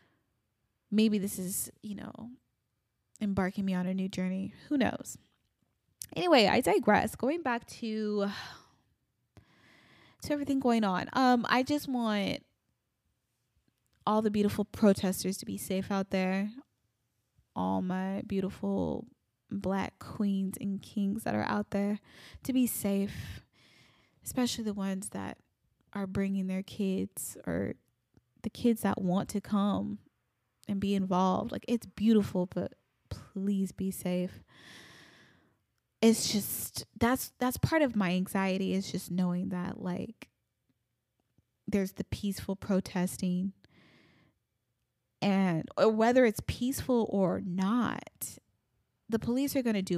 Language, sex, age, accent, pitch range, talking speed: English, female, 10-29, American, 180-220 Hz, 125 wpm